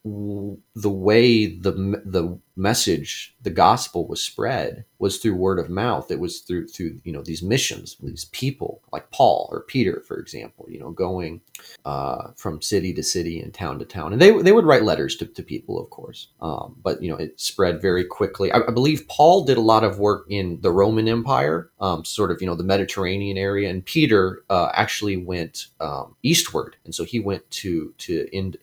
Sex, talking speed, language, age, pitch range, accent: male, 205 wpm, English, 30-49, 95-125 Hz, American